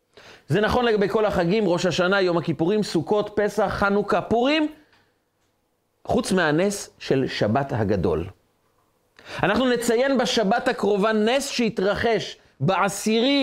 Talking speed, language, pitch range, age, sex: 110 wpm, Hebrew, 165-230 Hz, 40-59, male